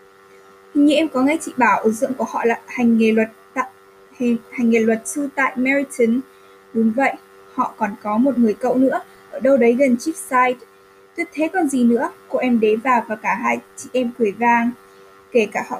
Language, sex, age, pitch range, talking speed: Vietnamese, female, 10-29, 220-270 Hz, 210 wpm